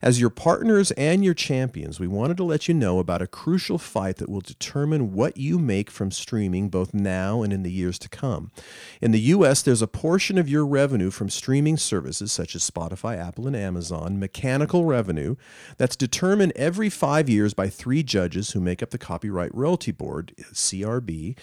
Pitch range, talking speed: 100-145 Hz, 190 wpm